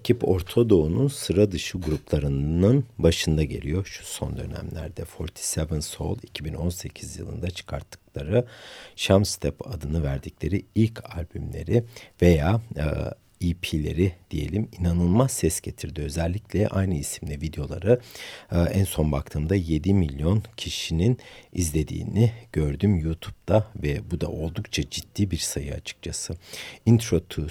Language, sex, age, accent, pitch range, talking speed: Turkish, male, 60-79, native, 75-105 Hz, 115 wpm